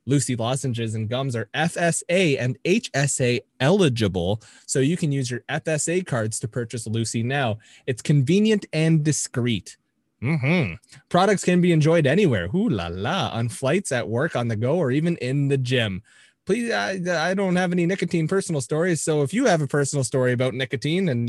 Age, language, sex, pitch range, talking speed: 20-39, English, male, 120-165 Hz, 180 wpm